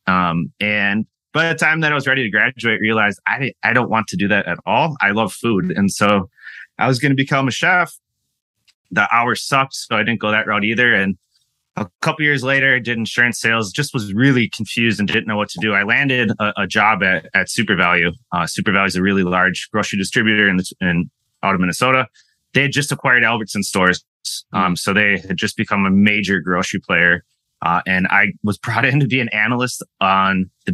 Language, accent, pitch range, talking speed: English, American, 95-120 Hz, 225 wpm